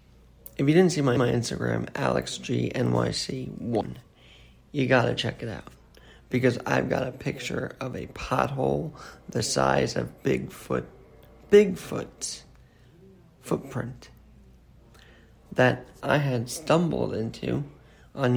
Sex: male